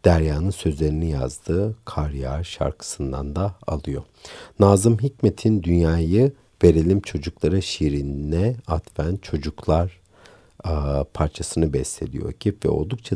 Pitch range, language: 75-100 Hz, Turkish